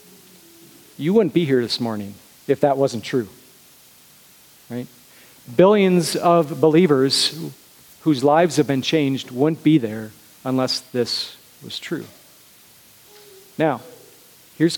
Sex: male